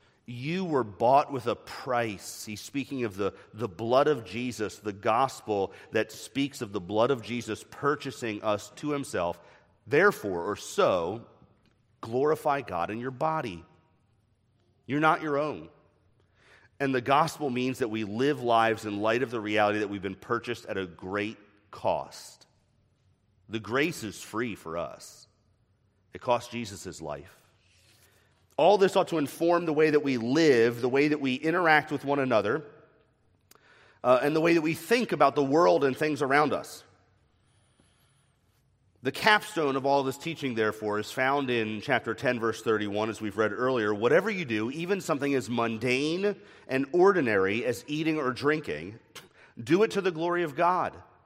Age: 30-49